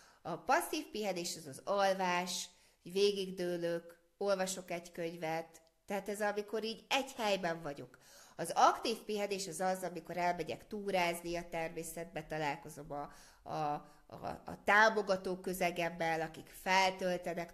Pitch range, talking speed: 165-205 Hz, 125 wpm